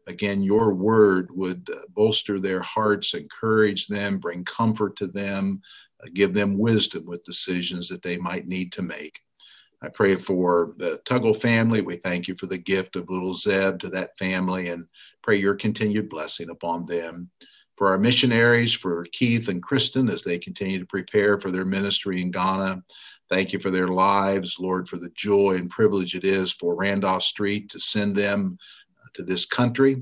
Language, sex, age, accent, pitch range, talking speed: English, male, 50-69, American, 90-105 Hz, 175 wpm